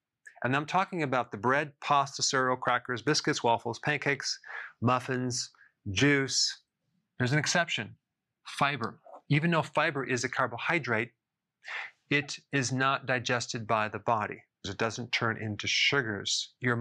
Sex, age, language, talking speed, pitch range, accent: male, 30-49, English, 130 wpm, 115-135 Hz, American